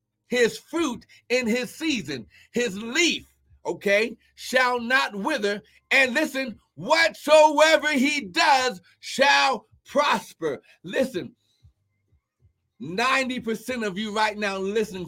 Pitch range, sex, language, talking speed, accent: 150-255 Hz, male, English, 100 wpm, American